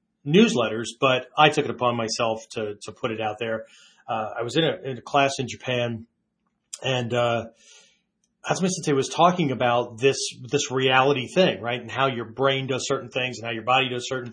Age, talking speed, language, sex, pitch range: 30-49, 195 wpm, English, male, 125-175 Hz